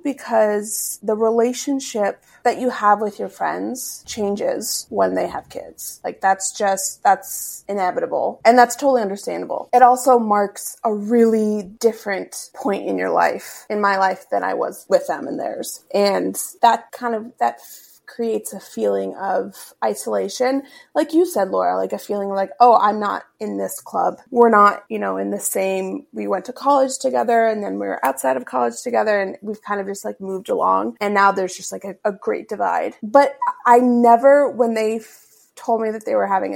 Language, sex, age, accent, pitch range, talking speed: English, female, 30-49, American, 195-245 Hz, 190 wpm